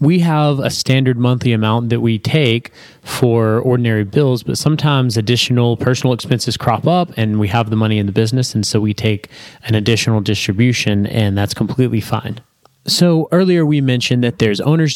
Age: 20-39